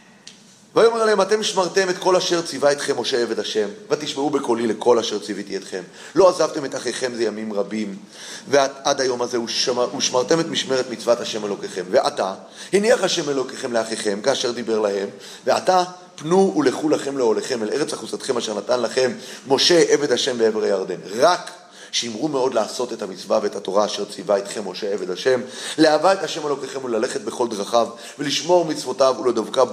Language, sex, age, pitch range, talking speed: Hebrew, male, 30-49, 120-160 Hz, 165 wpm